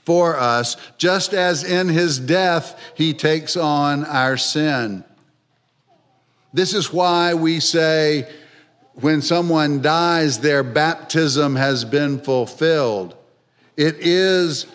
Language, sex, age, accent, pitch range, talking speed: English, male, 50-69, American, 125-155 Hz, 105 wpm